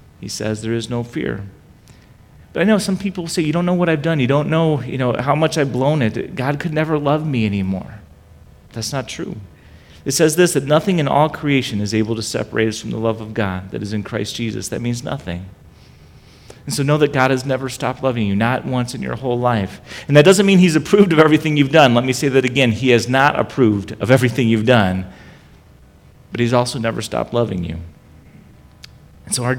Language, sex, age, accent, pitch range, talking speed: English, male, 40-59, American, 110-150 Hz, 225 wpm